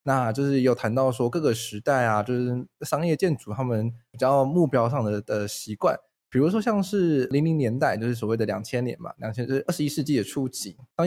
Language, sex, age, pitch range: Chinese, male, 20-39, 110-150 Hz